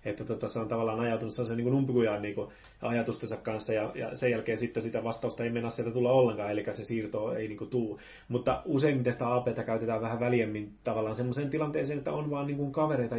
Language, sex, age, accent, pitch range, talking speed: Finnish, male, 30-49, native, 115-135 Hz, 210 wpm